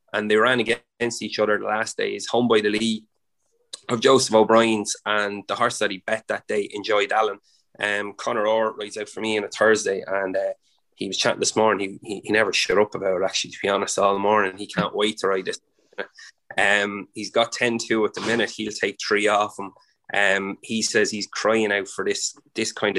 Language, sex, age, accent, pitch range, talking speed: English, male, 20-39, Irish, 105-120 Hz, 225 wpm